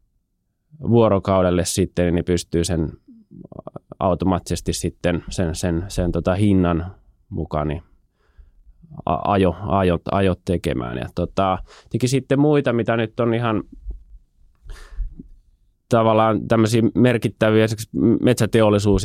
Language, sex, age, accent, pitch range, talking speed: Finnish, male, 20-39, native, 80-100 Hz, 90 wpm